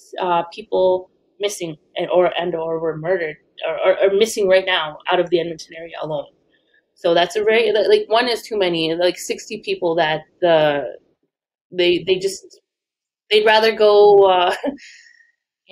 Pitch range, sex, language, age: 175-220 Hz, female, English, 20-39